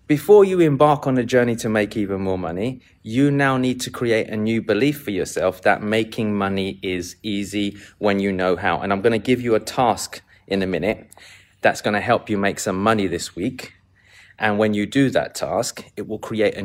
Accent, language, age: British, English, 30-49